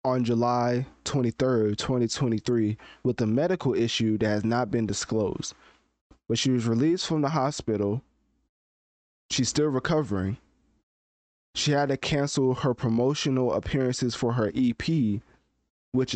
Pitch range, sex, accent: 105-130 Hz, male, American